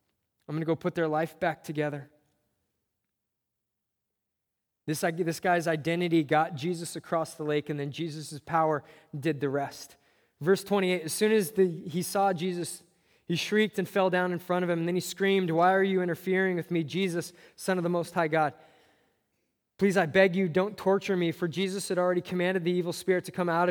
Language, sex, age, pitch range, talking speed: English, male, 20-39, 155-190 Hz, 195 wpm